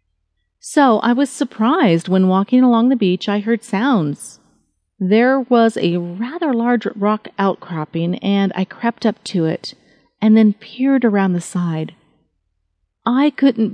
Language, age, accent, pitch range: English, 40-59, American, 165-220 Hz